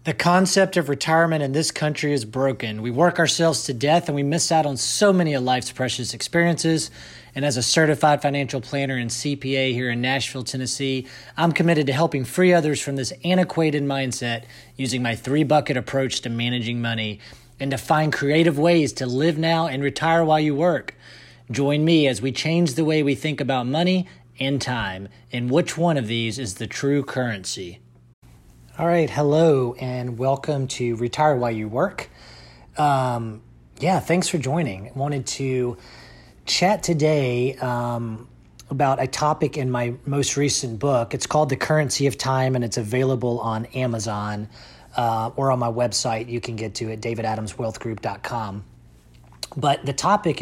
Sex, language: male, English